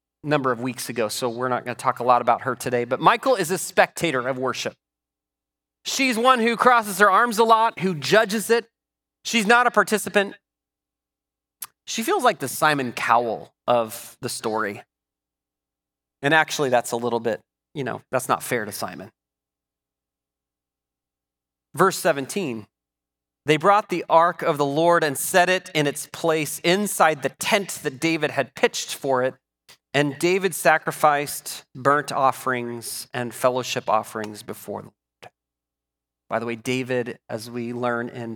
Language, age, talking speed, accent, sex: English, 30-49, 160 wpm, American, male